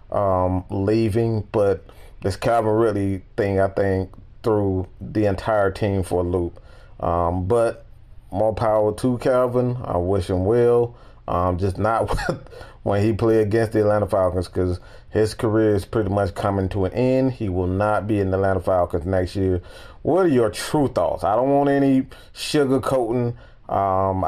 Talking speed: 170 wpm